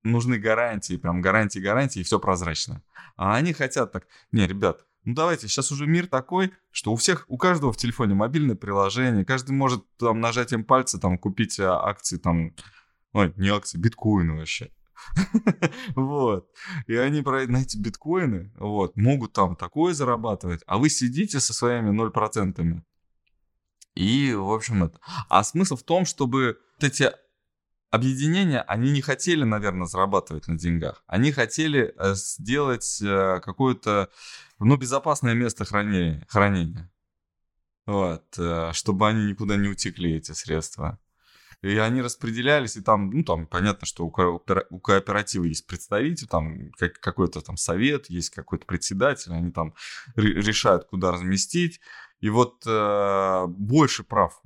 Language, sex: Russian, male